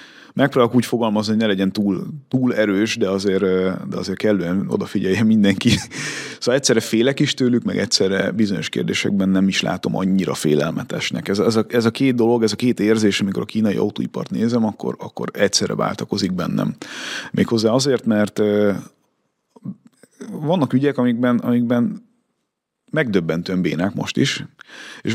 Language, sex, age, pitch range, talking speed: Hungarian, male, 30-49, 95-125 Hz, 150 wpm